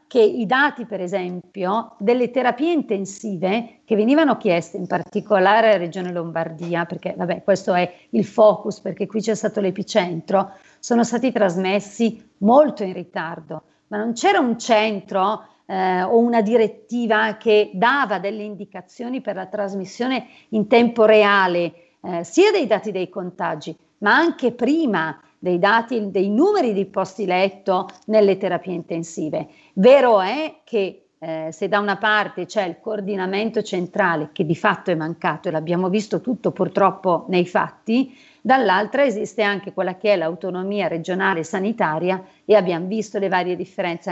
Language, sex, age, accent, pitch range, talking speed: Italian, female, 40-59, native, 180-225 Hz, 150 wpm